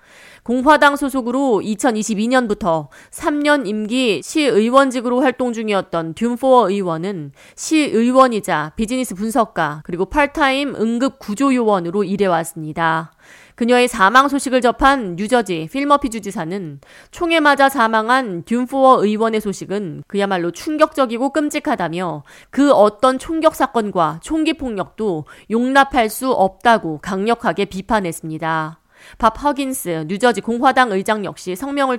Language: Korean